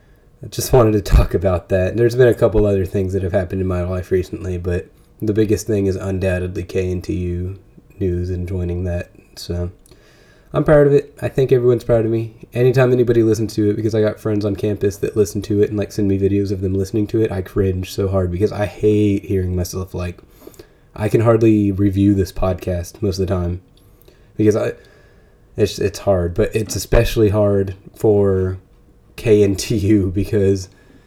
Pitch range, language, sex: 95-110 Hz, English, male